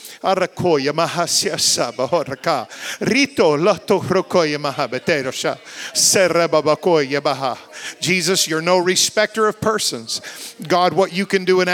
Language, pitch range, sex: English, 180-210 Hz, male